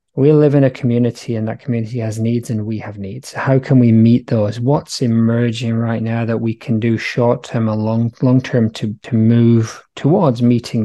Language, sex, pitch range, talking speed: English, male, 115-130 Hz, 200 wpm